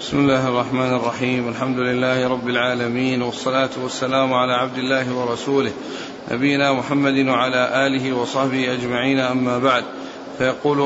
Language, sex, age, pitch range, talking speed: Arabic, male, 40-59, 135-155 Hz, 125 wpm